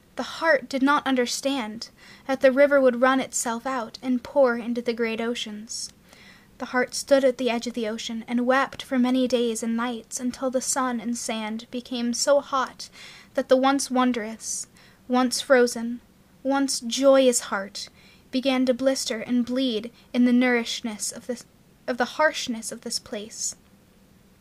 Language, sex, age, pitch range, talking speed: English, female, 10-29, 230-265 Hz, 160 wpm